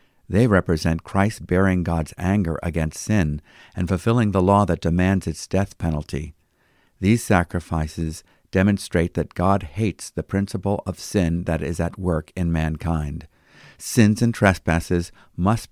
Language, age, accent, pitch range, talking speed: English, 50-69, American, 85-105 Hz, 140 wpm